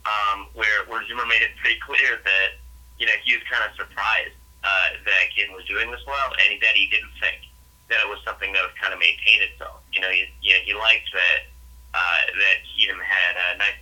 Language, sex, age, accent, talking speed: English, male, 30-49, American, 225 wpm